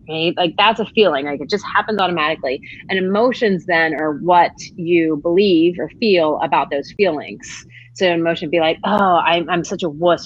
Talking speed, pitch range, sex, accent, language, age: 200 wpm, 155-195 Hz, female, American, English, 30-49